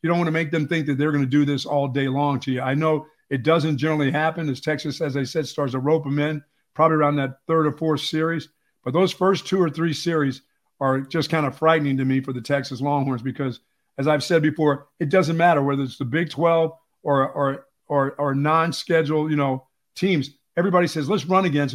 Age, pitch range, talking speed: 50-69, 140-170 Hz, 235 wpm